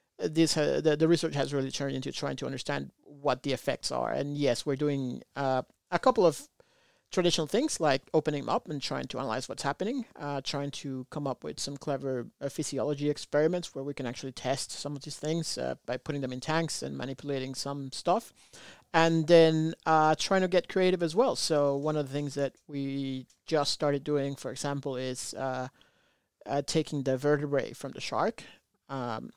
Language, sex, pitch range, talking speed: English, male, 135-160 Hz, 195 wpm